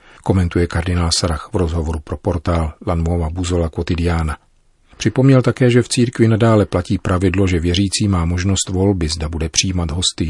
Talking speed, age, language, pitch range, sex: 155 wpm, 40-59, Czech, 85-105 Hz, male